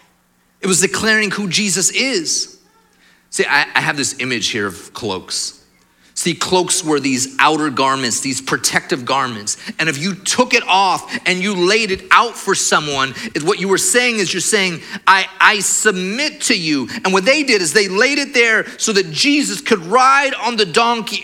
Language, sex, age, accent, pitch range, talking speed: English, male, 30-49, American, 180-220 Hz, 185 wpm